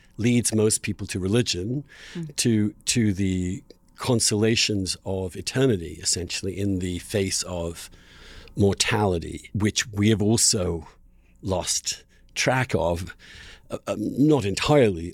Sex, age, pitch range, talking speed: male, 50-69, 90-130 Hz, 105 wpm